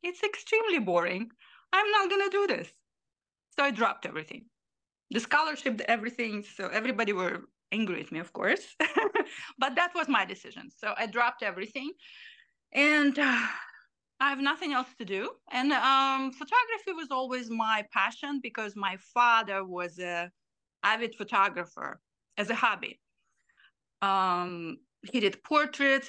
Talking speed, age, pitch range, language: 145 wpm, 30-49, 200-280 Hz, English